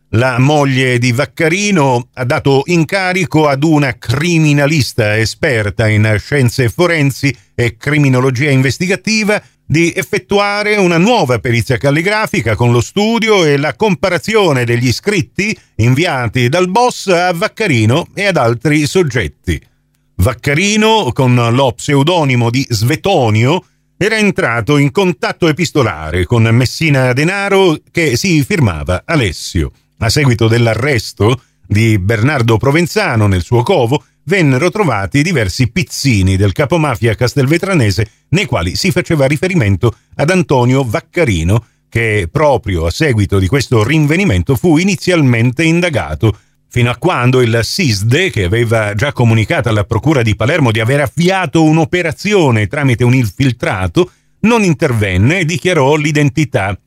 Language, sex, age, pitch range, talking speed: Italian, male, 50-69, 115-170 Hz, 125 wpm